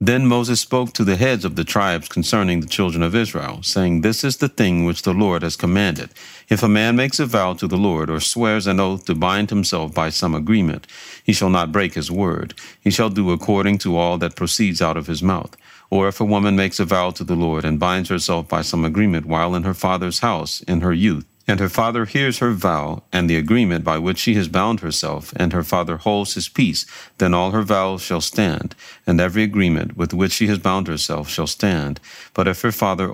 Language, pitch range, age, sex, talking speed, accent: English, 85-105 Hz, 50-69, male, 230 wpm, American